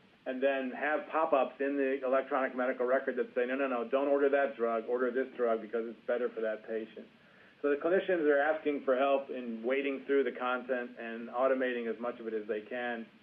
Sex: male